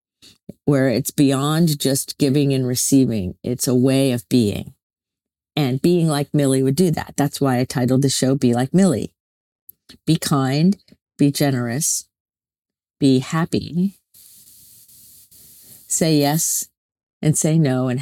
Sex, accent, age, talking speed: female, American, 50-69, 135 wpm